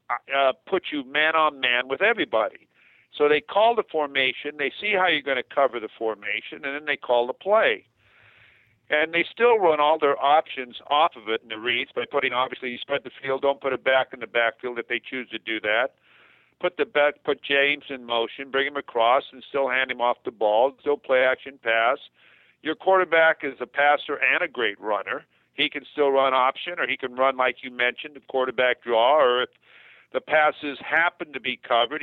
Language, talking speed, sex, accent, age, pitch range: English, 215 wpm, male, American, 50-69, 125-160 Hz